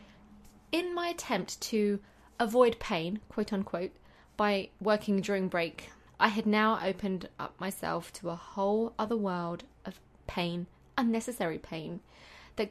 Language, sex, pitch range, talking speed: English, female, 190-250 Hz, 130 wpm